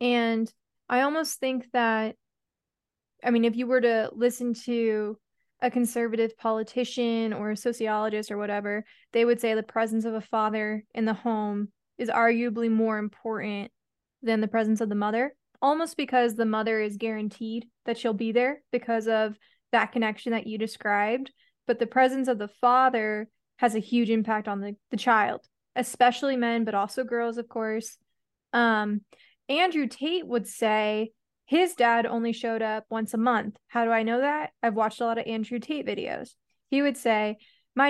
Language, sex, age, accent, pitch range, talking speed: English, female, 20-39, American, 225-250 Hz, 175 wpm